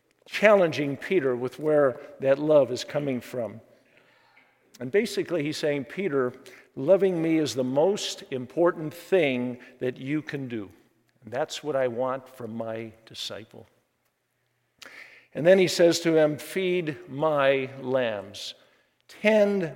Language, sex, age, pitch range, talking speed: English, male, 50-69, 135-185 Hz, 130 wpm